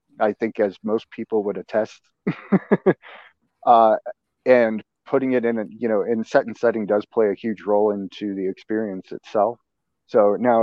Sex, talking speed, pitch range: male, 170 wpm, 100-120 Hz